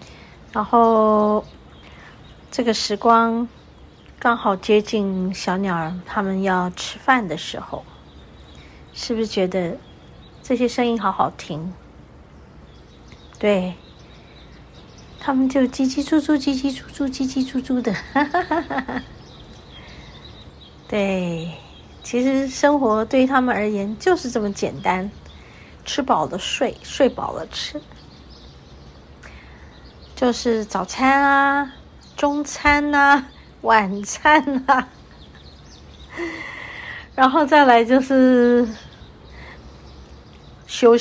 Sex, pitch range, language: female, 185-265 Hz, Chinese